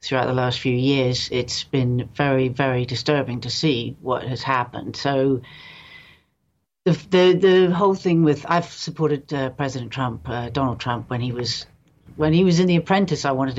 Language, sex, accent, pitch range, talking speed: English, female, British, 125-155 Hz, 180 wpm